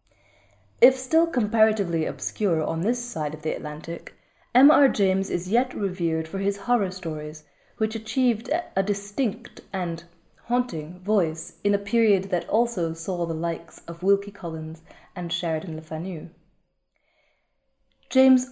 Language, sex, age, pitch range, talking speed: English, female, 30-49, 165-215 Hz, 140 wpm